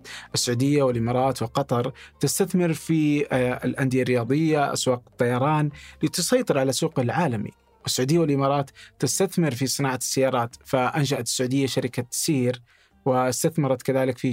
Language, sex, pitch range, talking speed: Arabic, male, 125-155 Hz, 110 wpm